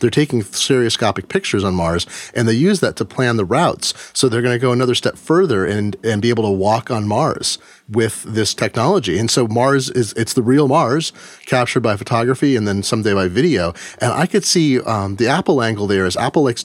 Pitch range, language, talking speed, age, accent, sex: 110-135 Hz, English, 220 wpm, 30-49, American, male